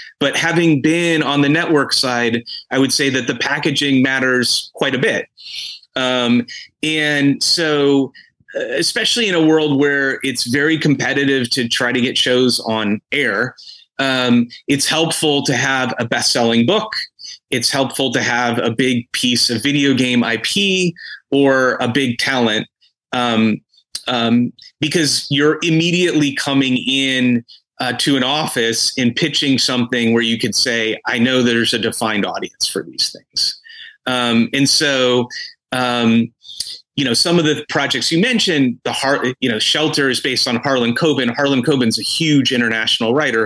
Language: English